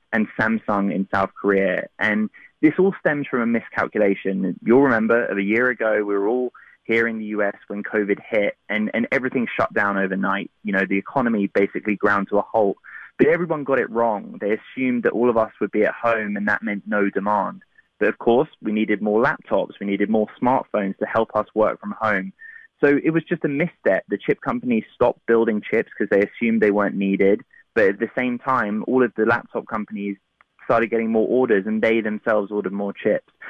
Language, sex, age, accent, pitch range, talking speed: English, male, 20-39, British, 100-120 Hz, 210 wpm